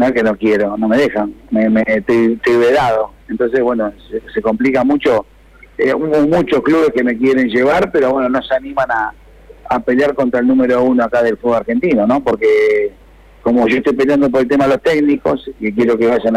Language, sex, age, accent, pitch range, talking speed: Spanish, male, 50-69, Argentinian, 115-140 Hz, 210 wpm